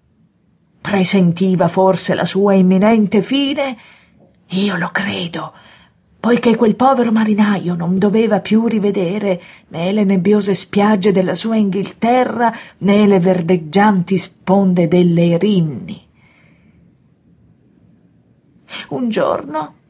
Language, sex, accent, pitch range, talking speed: Italian, female, native, 180-230 Hz, 95 wpm